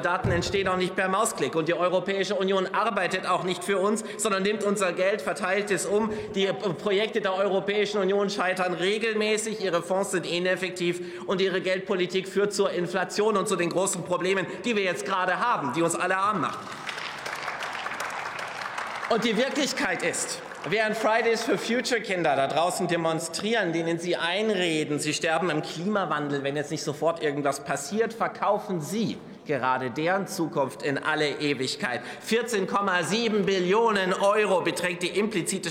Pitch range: 180-215 Hz